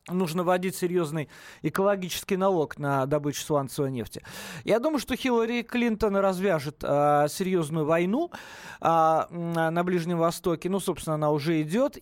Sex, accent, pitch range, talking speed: male, native, 155-200 Hz, 125 wpm